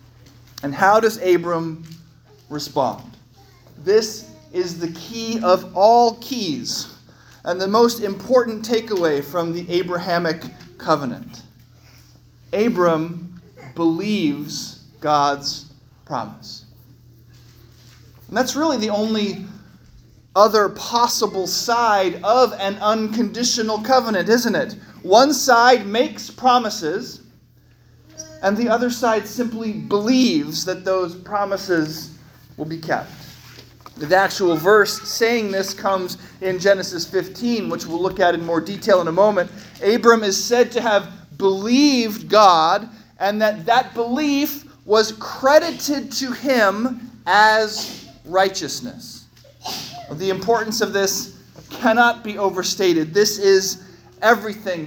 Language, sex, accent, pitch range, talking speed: English, male, American, 165-230 Hz, 110 wpm